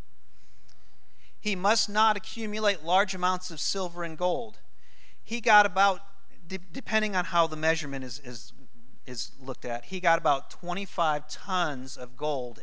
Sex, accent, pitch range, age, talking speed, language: male, American, 135-185 Hz, 40-59, 145 wpm, English